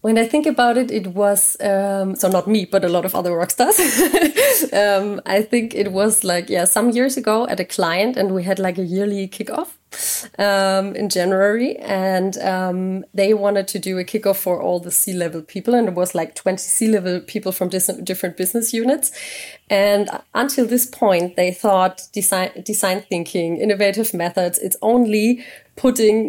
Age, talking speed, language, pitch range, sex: 30-49, 185 wpm, English, 190-230 Hz, female